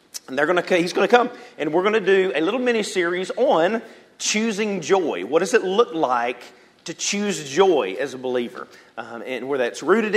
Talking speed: 205 wpm